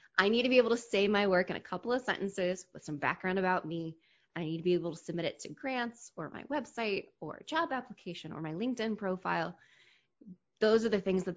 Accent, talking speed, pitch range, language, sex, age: American, 230 wpm, 165-210 Hz, English, female, 20-39